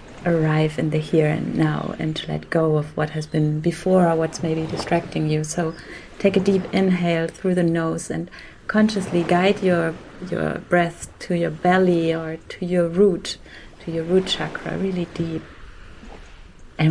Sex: female